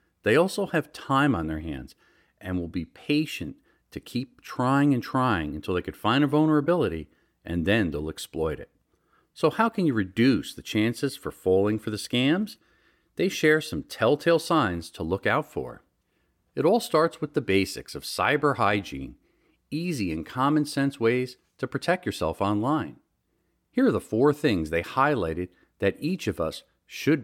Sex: male